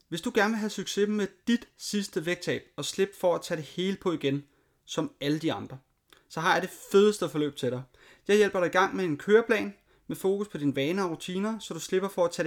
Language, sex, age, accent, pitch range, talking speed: Danish, male, 30-49, native, 160-210 Hz, 250 wpm